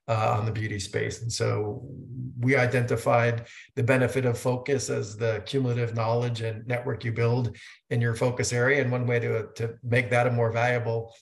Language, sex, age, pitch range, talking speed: English, male, 50-69, 115-125 Hz, 185 wpm